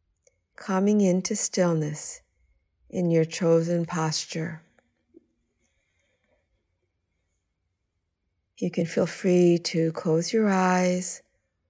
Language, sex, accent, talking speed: English, female, American, 75 wpm